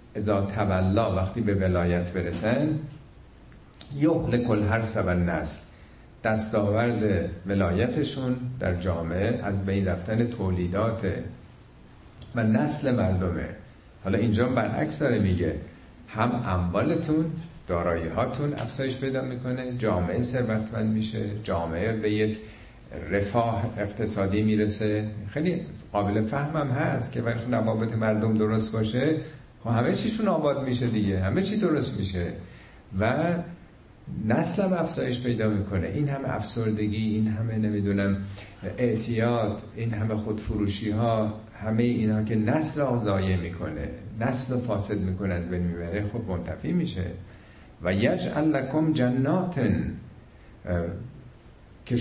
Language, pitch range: Persian, 95-125 Hz